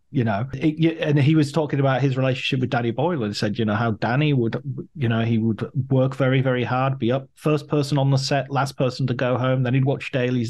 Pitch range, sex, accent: 115-145 Hz, male, British